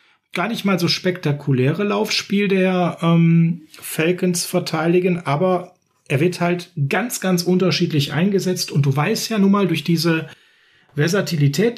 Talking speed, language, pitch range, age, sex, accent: 140 wpm, German, 145-180 Hz, 40-59, male, German